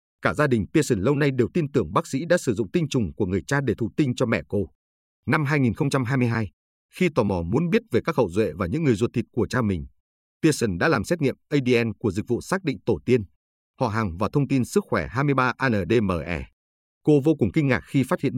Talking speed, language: 240 wpm, Vietnamese